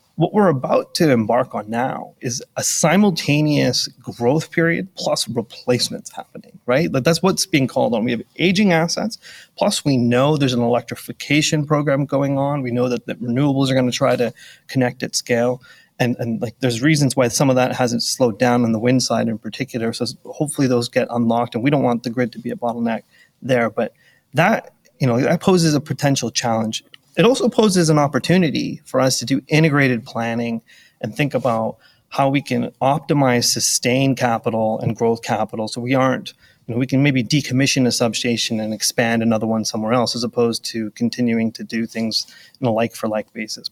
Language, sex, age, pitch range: English, male, 30-49, 120-150 Hz